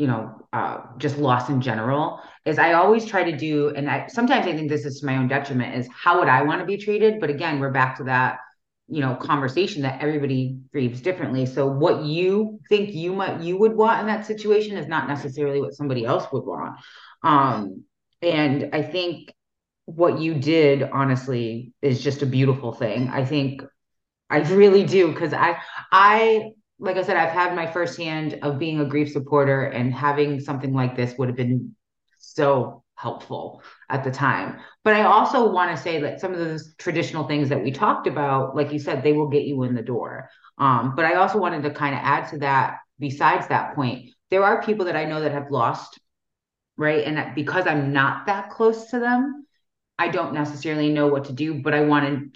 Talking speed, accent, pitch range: 210 wpm, American, 135-175 Hz